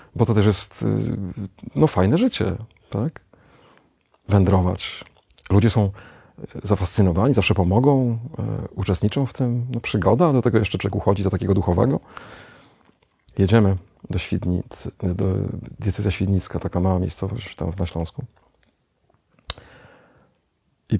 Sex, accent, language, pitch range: male, native, Polish, 95-115 Hz